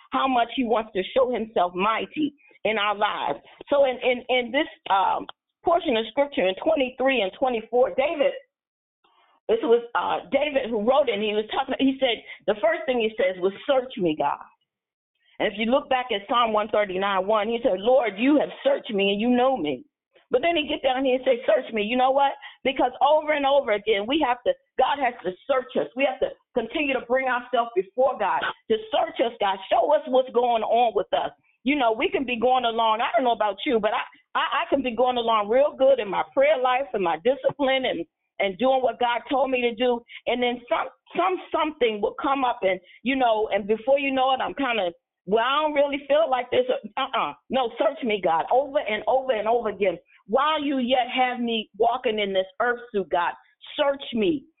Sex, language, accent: female, English, American